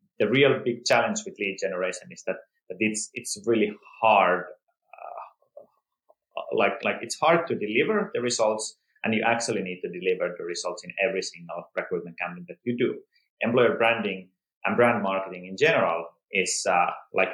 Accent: Finnish